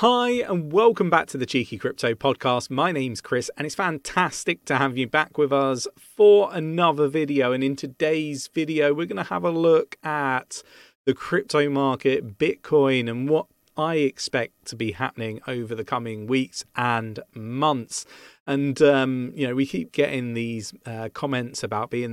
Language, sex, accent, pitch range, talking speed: English, male, British, 120-150 Hz, 175 wpm